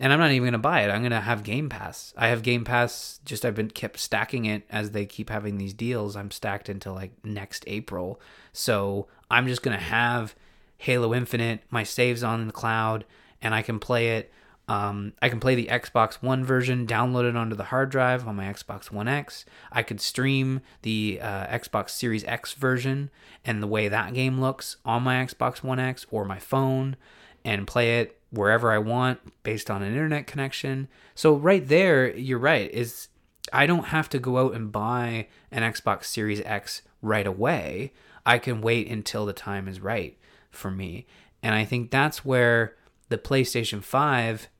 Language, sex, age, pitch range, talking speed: English, male, 20-39, 105-130 Hz, 195 wpm